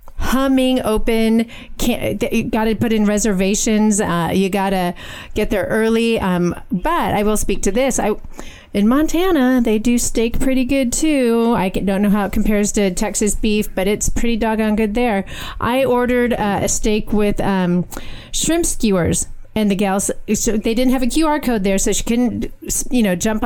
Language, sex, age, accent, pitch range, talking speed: English, female, 30-49, American, 200-235 Hz, 170 wpm